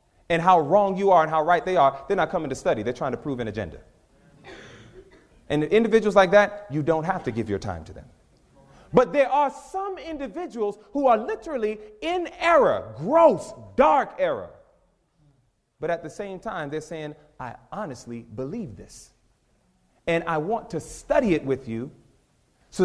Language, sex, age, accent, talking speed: English, male, 30-49, American, 175 wpm